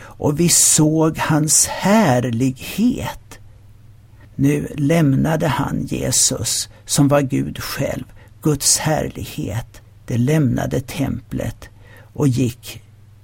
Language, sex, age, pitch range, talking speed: Swedish, male, 60-79, 110-155 Hz, 90 wpm